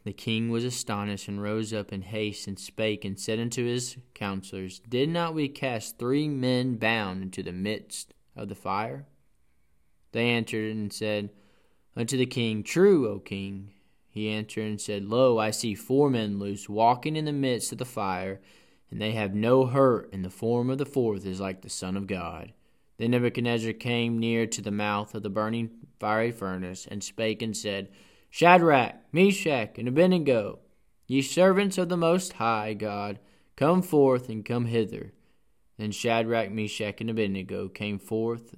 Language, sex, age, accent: English, male, 20-39, American